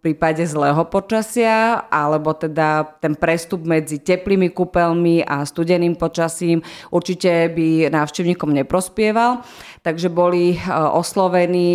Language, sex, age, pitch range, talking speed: Slovak, female, 30-49, 155-180 Hz, 105 wpm